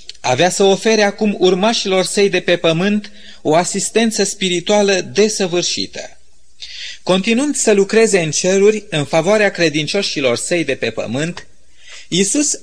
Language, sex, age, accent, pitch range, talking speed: Romanian, male, 30-49, native, 155-200 Hz, 125 wpm